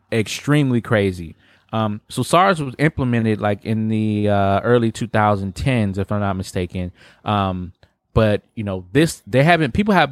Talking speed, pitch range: 155 wpm, 100-125 Hz